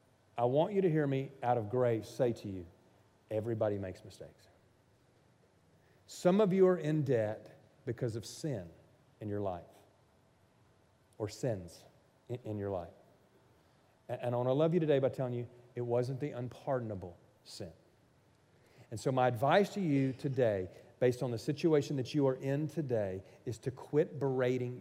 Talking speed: 160 wpm